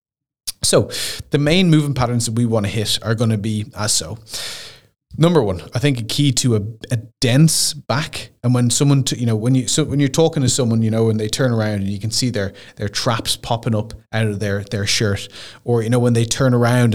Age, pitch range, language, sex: 20-39, 110-130 Hz, English, male